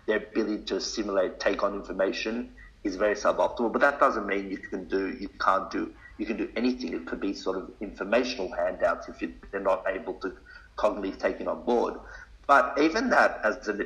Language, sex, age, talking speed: English, male, 50-69, 200 wpm